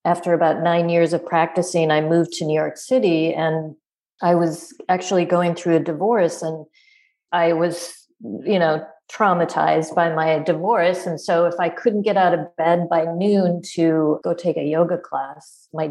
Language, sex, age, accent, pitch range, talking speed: English, female, 40-59, American, 160-185 Hz, 175 wpm